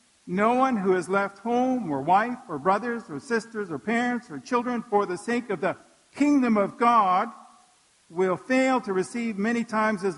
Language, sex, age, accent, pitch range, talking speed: English, male, 50-69, American, 180-240 Hz, 185 wpm